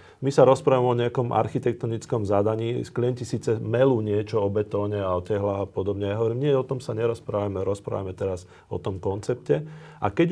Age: 40-59